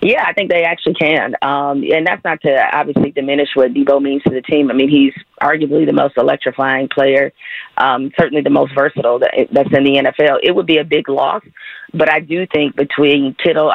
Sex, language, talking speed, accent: female, English, 210 wpm, American